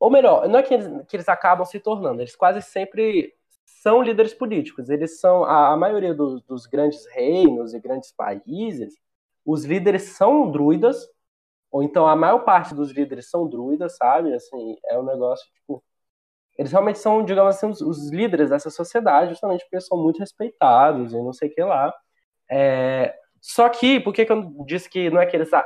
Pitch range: 145-220 Hz